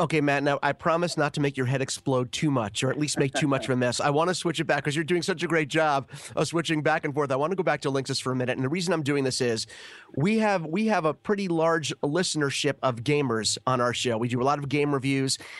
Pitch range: 135-170 Hz